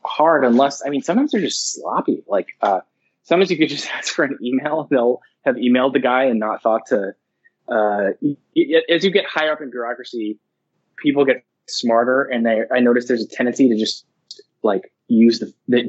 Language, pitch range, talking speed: English, 110-135 Hz, 200 wpm